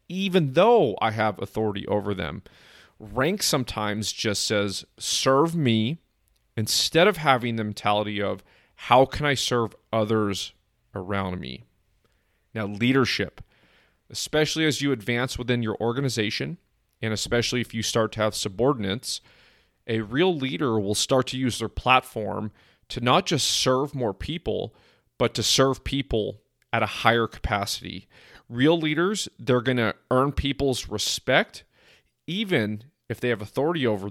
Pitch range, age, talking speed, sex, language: 105-135 Hz, 30-49, 140 wpm, male, English